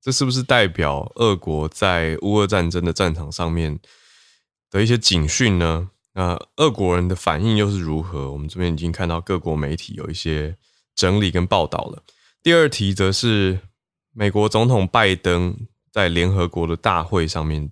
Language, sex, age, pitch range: Chinese, male, 20-39, 85-110 Hz